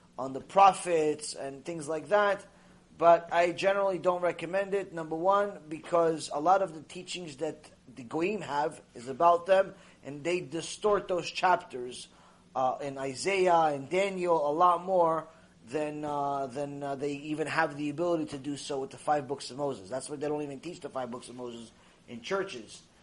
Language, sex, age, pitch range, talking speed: English, male, 20-39, 140-180 Hz, 190 wpm